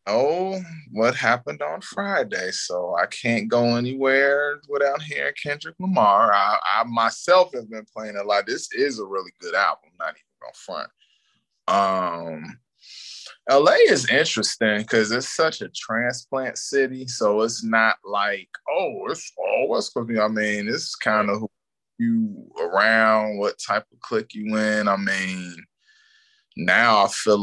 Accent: American